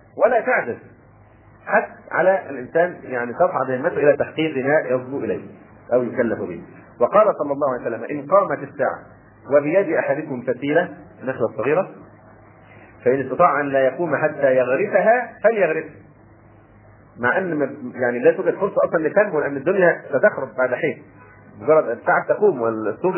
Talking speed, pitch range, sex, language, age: 140 wpm, 125-170 Hz, male, Arabic, 40-59